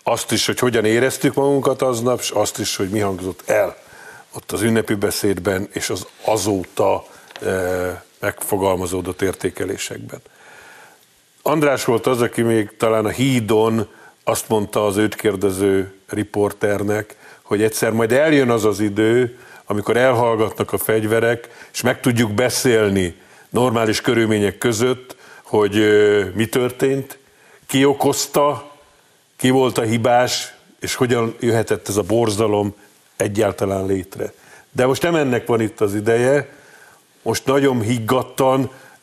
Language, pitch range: Hungarian, 110-130 Hz